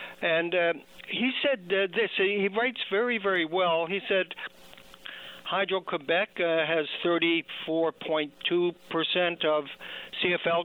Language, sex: English, male